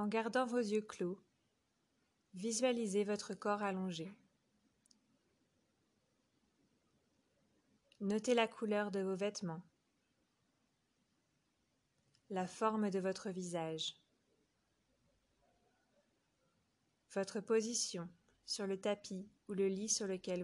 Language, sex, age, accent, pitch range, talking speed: English, female, 20-39, French, 185-230 Hz, 90 wpm